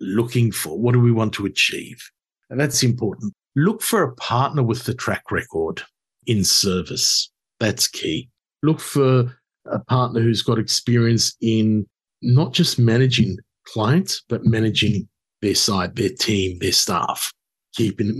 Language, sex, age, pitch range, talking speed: English, male, 50-69, 115-135 Hz, 145 wpm